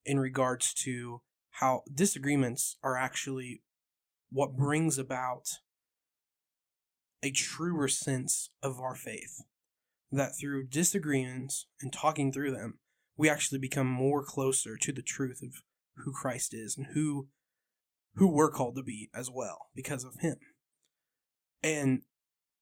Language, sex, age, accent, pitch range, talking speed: English, male, 20-39, American, 130-145 Hz, 125 wpm